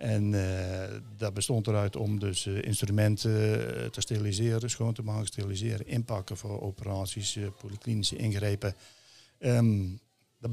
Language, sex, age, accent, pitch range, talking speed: Dutch, male, 60-79, Dutch, 105-130 Hz, 135 wpm